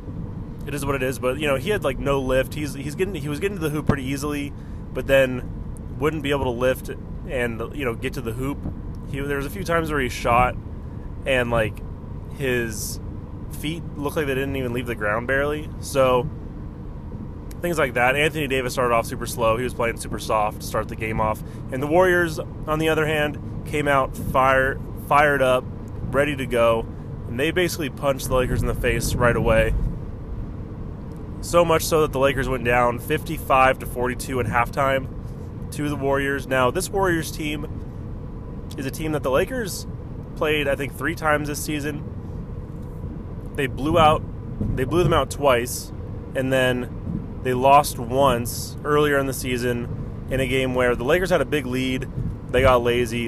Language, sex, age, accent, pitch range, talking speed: English, male, 20-39, American, 115-140 Hz, 190 wpm